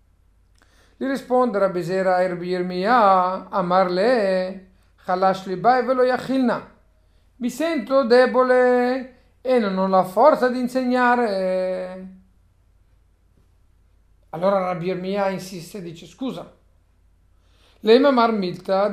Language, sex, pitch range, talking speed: Italian, male, 175-250 Hz, 100 wpm